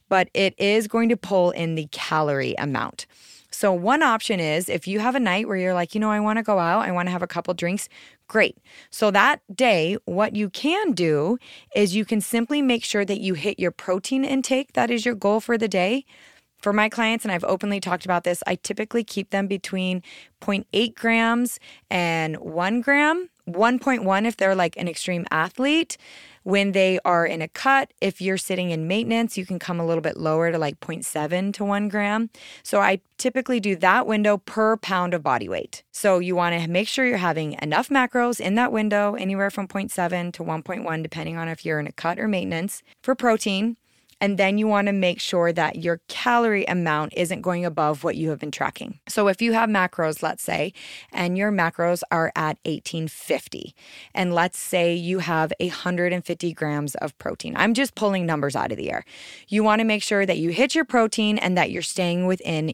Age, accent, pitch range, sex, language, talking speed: 20-39, American, 170-220 Hz, female, English, 210 wpm